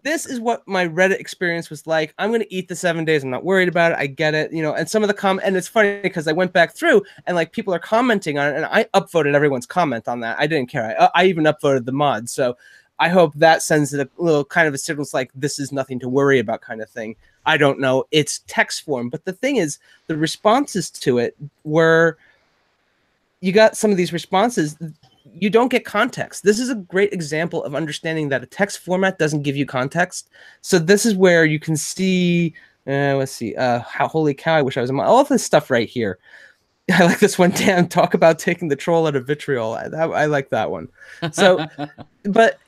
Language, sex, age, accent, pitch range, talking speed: English, male, 30-49, American, 145-195 Hz, 235 wpm